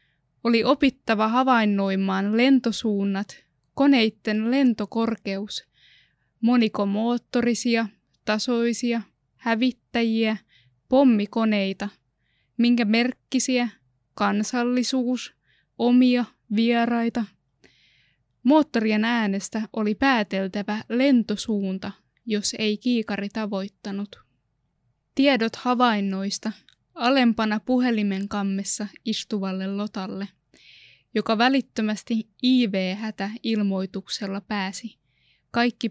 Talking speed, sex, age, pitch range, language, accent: 60 wpm, female, 20-39, 200-235 Hz, Finnish, native